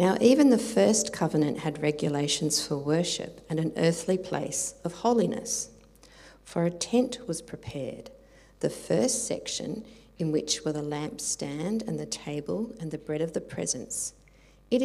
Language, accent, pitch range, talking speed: English, Australian, 155-205 Hz, 155 wpm